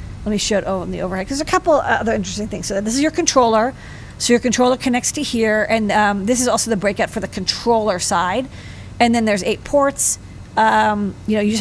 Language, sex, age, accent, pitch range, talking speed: English, female, 40-59, American, 205-245 Hz, 240 wpm